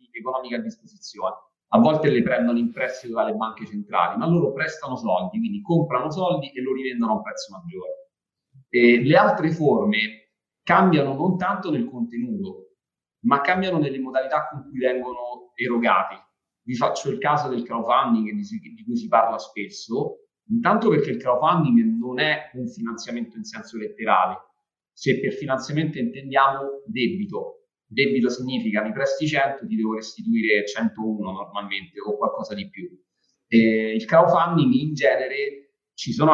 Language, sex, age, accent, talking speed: Italian, male, 30-49, native, 150 wpm